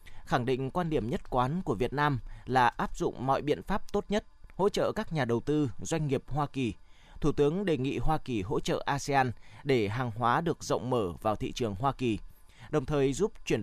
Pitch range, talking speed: 120-160 Hz, 225 wpm